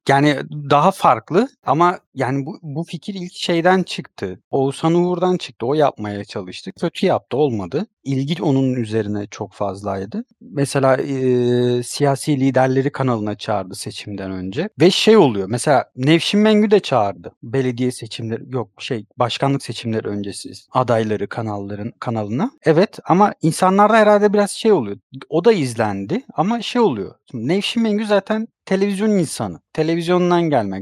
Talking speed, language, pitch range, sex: 140 wpm, Turkish, 115-175 Hz, male